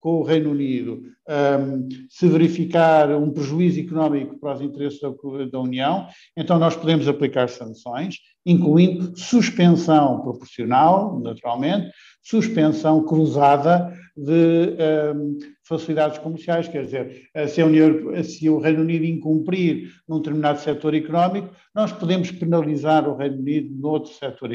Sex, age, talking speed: male, 50-69, 120 wpm